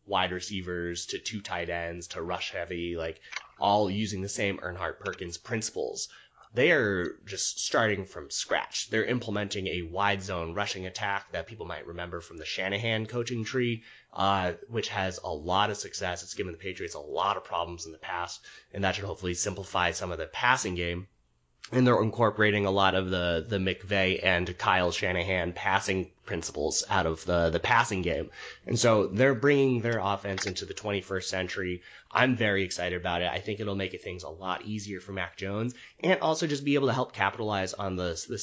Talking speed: 195 wpm